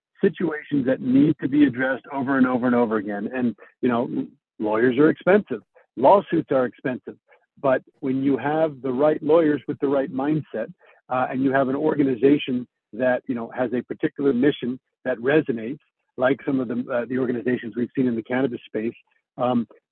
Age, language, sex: 50-69, English, male